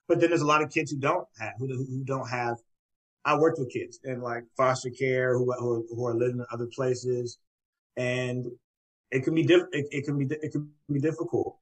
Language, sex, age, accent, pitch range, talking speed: English, male, 30-49, American, 120-175 Hz, 220 wpm